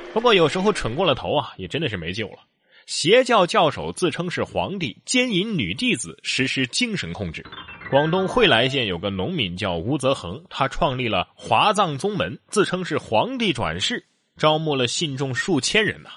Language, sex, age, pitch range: Chinese, male, 20-39, 115-185 Hz